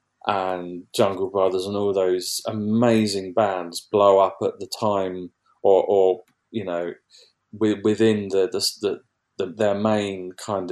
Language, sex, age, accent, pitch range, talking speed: English, male, 30-49, British, 90-110 Hz, 140 wpm